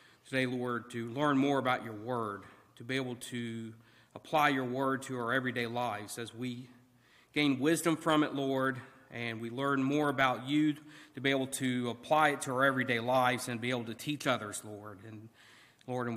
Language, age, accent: English, 50-69, American